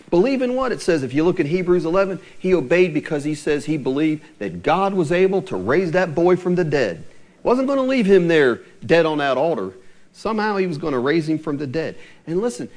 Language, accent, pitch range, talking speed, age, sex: English, American, 150-215 Hz, 240 wpm, 40-59, male